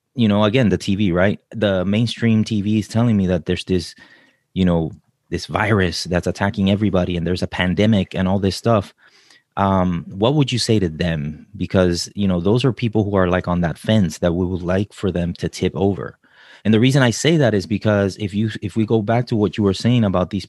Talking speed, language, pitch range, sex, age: 230 wpm, English, 95-115 Hz, male, 30-49